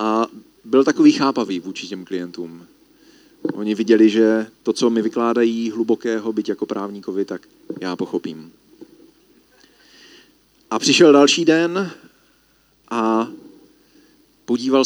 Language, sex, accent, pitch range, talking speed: Czech, male, native, 110-150 Hz, 110 wpm